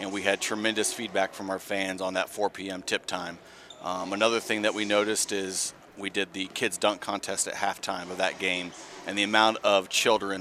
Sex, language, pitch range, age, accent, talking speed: male, English, 100-120 Hz, 30-49, American, 215 wpm